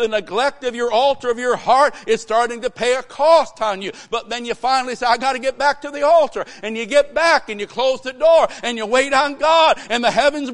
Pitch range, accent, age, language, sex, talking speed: 185-250 Hz, American, 60-79, English, male, 260 wpm